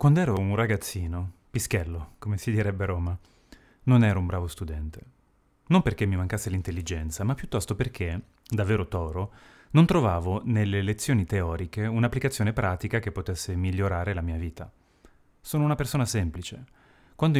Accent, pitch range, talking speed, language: native, 90-125 Hz, 150 wpm, Italian